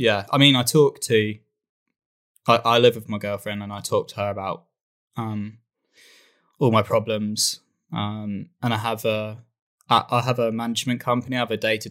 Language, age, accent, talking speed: English, 10-29, British, 185 wpm